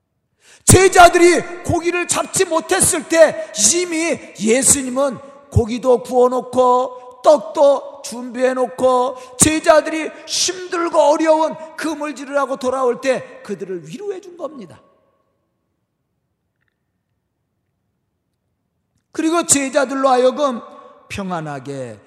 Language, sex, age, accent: Korean, male, 40-59, native